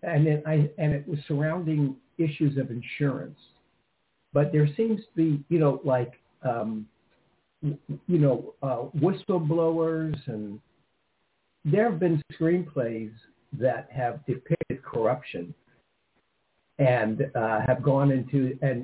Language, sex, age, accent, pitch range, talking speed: English, male, 60-79, American, 125-150 Hz, 120 wpm